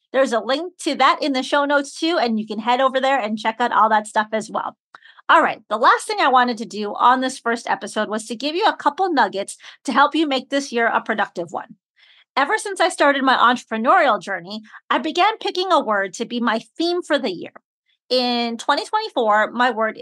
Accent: American